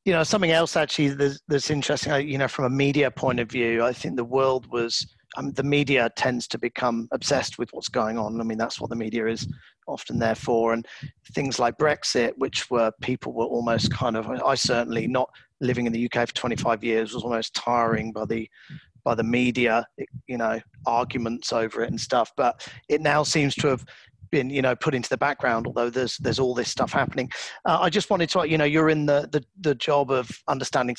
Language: English